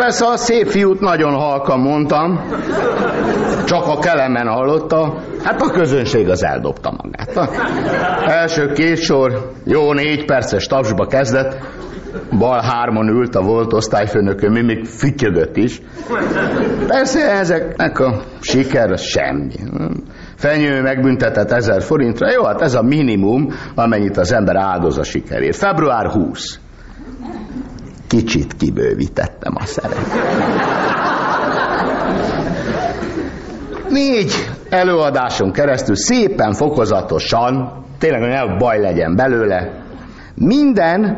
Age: 60-79